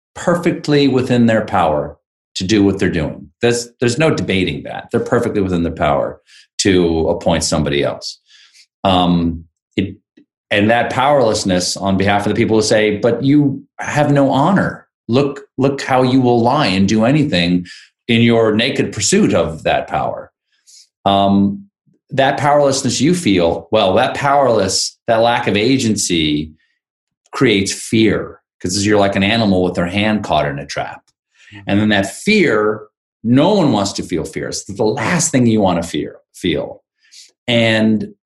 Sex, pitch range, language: male, 95-130 Hz, English